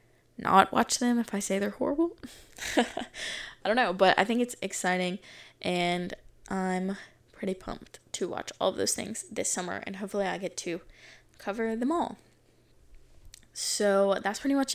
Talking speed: 165 wpm